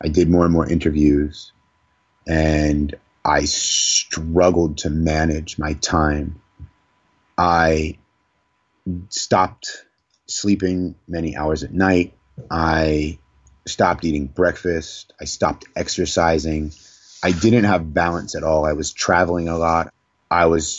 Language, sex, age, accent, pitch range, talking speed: English, male, 30-49, American, 80-95 Hz, 115 wpm